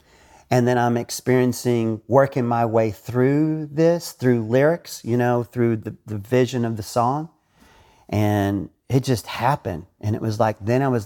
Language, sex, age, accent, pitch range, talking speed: English, male, 40-59, American, 110-125 Hz, 170 wpm